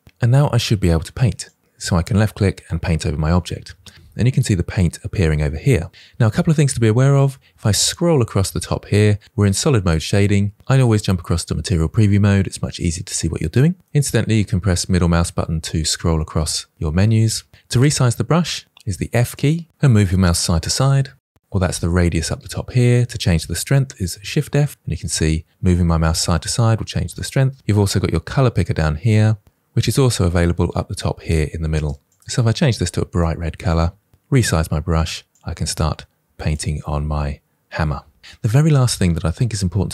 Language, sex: English, male